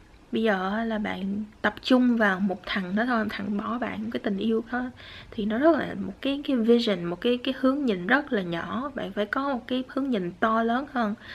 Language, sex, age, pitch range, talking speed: Vietnamese, female, 20-39, 210-260 Hz, 235 wpm